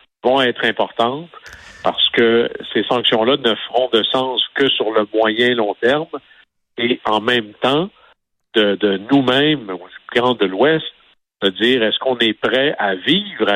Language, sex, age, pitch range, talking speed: French, male, 60-79, 105-130 Hz, 150 wpm